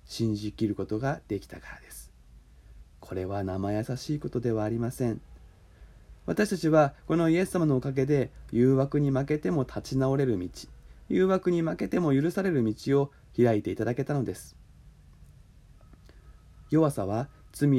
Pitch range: 105-140 Hz